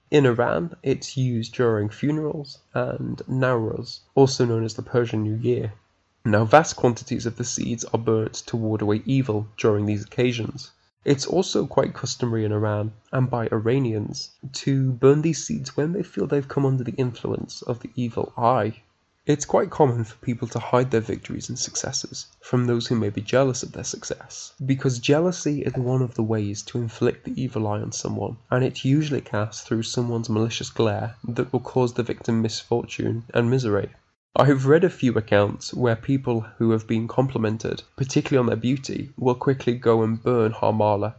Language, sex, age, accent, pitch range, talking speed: English, male, 20-39, British, 110-130 Hz, 185 wpm